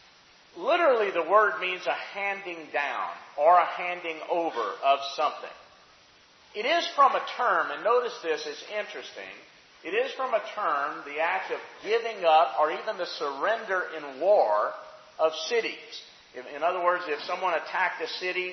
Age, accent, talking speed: 50-69, American, 160 wpm